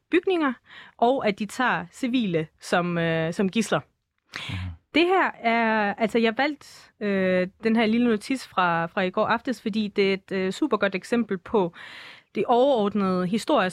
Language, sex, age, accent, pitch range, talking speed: Danish, female, 30-49, native, 185-235 Hz, 165 wpm